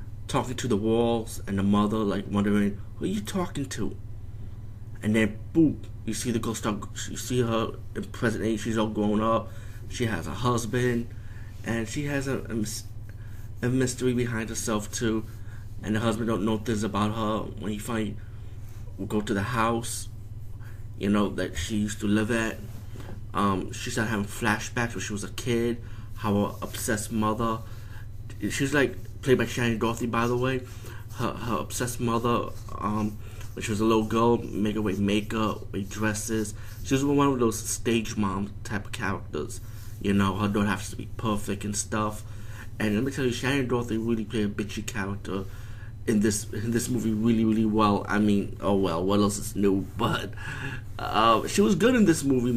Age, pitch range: 20-39, 105-115 Hz